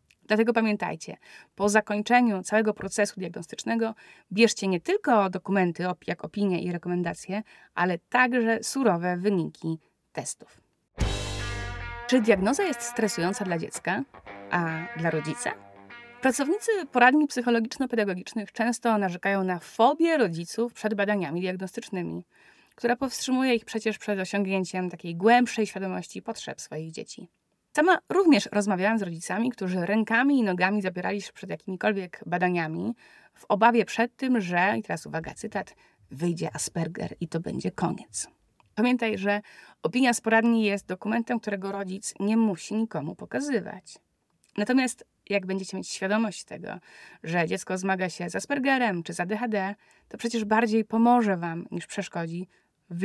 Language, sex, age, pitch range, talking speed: Polish, female, 20-39, 180-230 Hz, 130 wpm